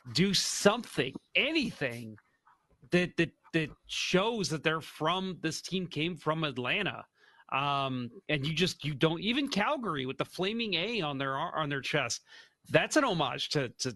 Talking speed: 160 wpm